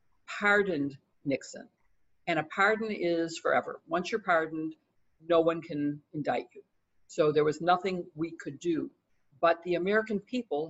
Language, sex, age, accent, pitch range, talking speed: English, female, 50-69, American, 150-185 Hz, 145 wpm